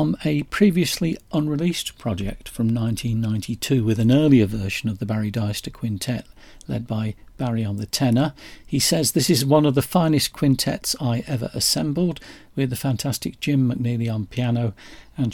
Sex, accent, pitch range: male, British, 110-145 Hz